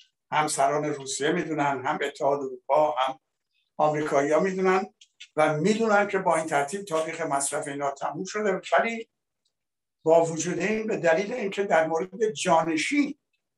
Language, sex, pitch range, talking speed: Persian, male, 150-190 Hz, 145 wpm